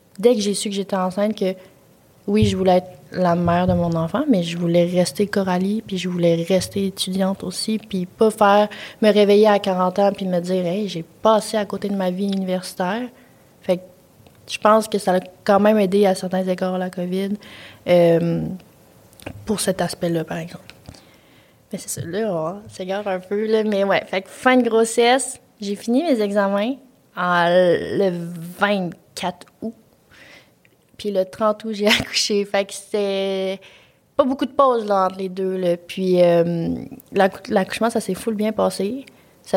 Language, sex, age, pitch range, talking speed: French, female, 20-39, 185-220 Hz, 185 wpm